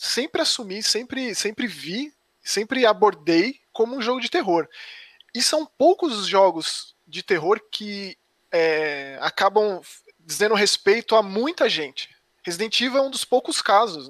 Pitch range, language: 170-245 Hz, Portuguese